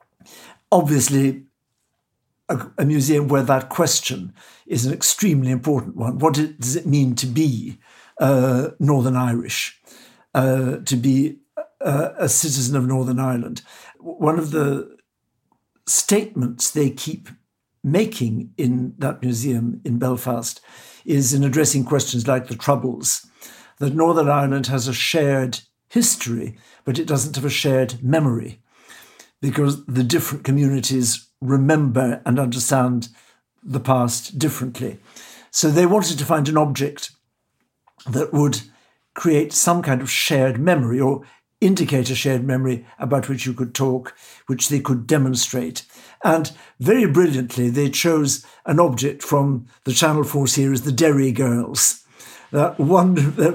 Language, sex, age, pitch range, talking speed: English, male, 60-79, 125-150 Hz, 135 wpm